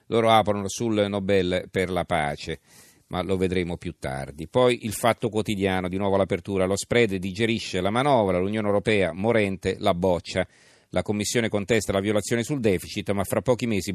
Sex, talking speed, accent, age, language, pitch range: male, 170 wpm, native, 40-59, Italian, 90-110 Hz